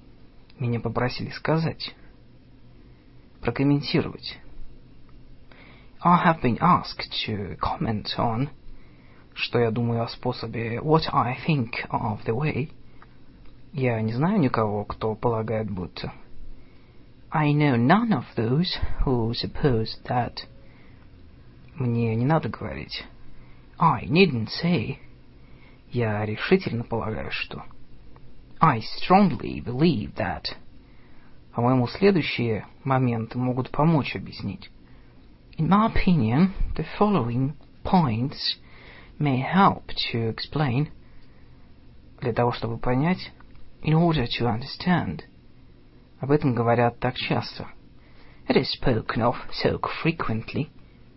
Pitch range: 110-150 Hz